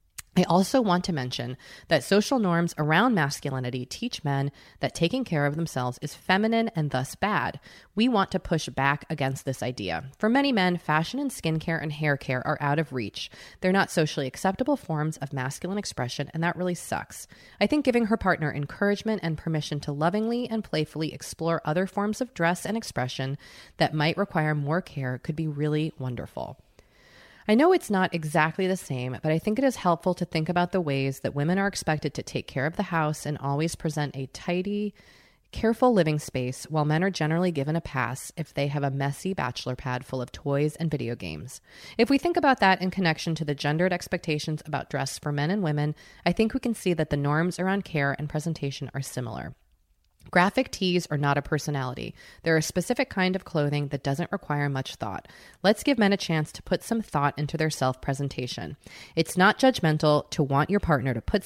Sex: female